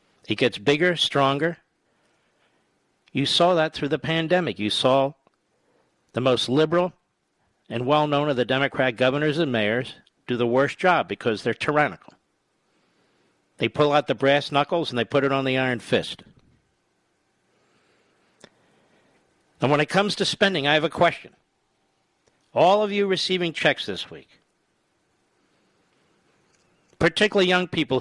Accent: American